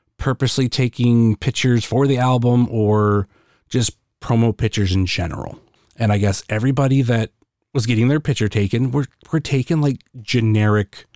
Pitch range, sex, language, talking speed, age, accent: 100-125 Hz, male, English, 145 wpm, 30-49, American